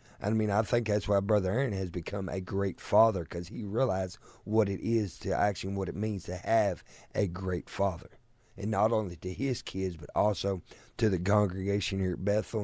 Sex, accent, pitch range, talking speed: male, American, 95-115 Hz, 205 wpm